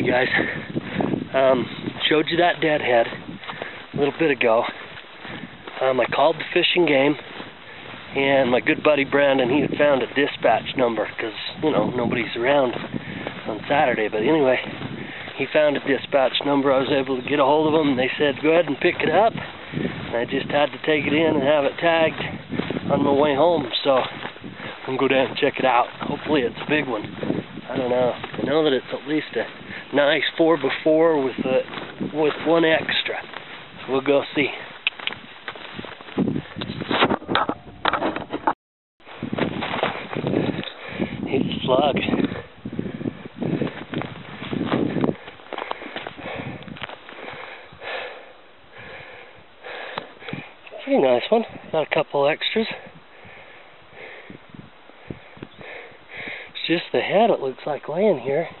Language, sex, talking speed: English, male, 130 wpm